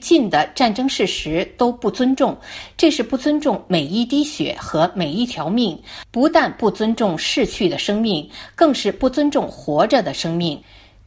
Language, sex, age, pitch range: Chinese, female, 50-69, 195-285 Hz